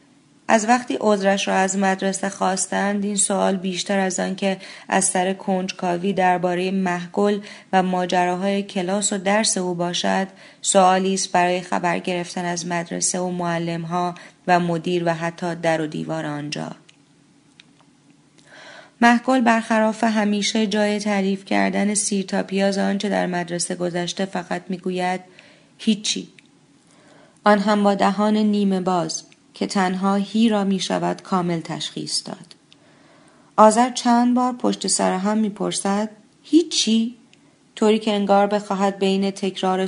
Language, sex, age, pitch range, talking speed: Persian, female, 30-49, 175-205 Hz, 130 wpm